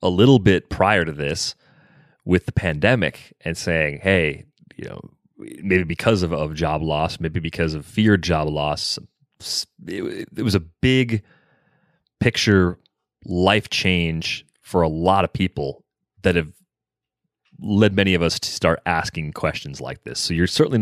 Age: 30-49